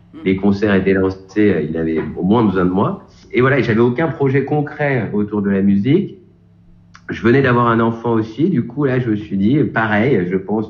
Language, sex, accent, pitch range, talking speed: French, male, French, 90-110 Hz, 210 wpm